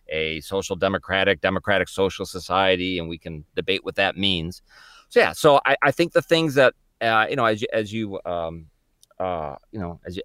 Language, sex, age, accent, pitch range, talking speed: English, male, 40-59, American, 85-110 Hz, 205 wpm